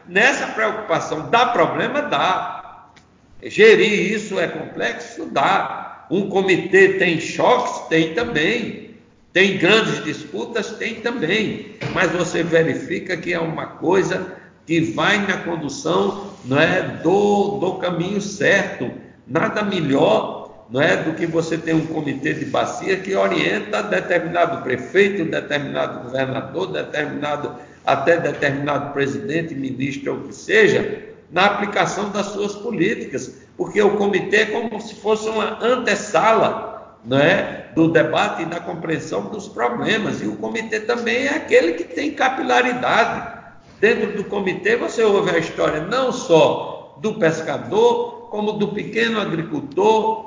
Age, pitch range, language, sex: 60-79, 170-240 Hz, Portuguese, male